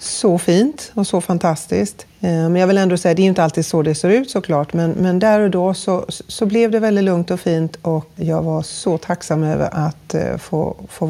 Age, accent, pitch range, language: 40-59, native, 155-185 Hz, Swedish